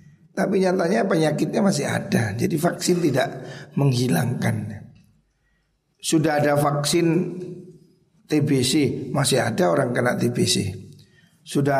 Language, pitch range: Indonesian, 120-160 Hz